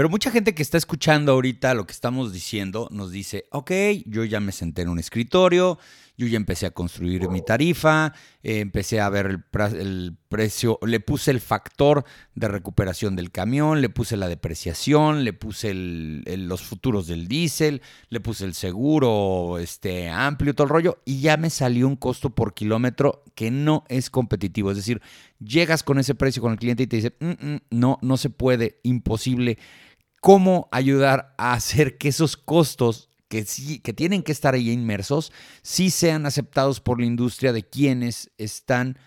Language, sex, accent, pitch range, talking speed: Spanish, male, Mexican, 105-145 Hz, 175 wpm